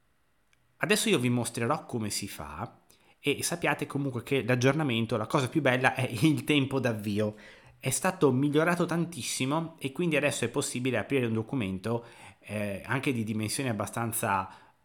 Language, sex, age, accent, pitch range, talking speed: Italian, male, 30-49, native, 105-145 Hz, 150 wpm